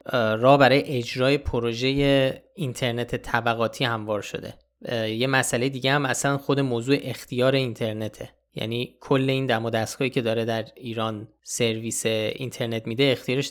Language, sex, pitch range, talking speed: Persian, male, 115-135 Hz, 140 wpm